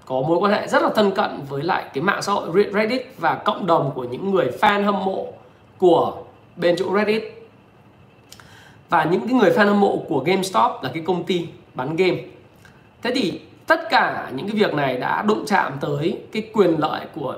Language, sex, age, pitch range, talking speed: Vietnamese, male, 20-39, 160-205 Hz, 205 wpm